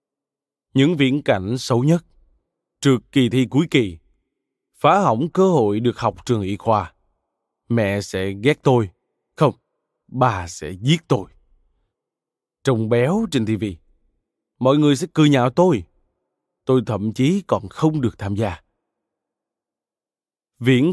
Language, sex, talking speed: Vietnamese, male, 135 wpm